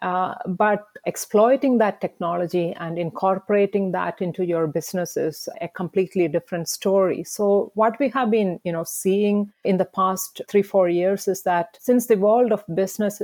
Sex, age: female, 50-69